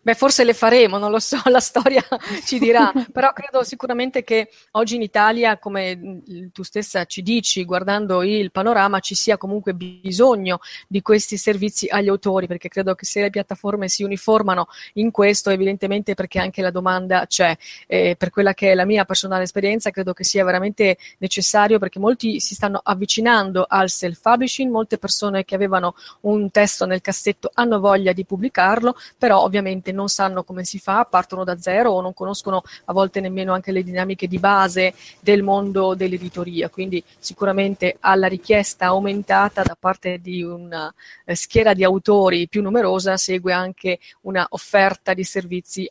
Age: 30-49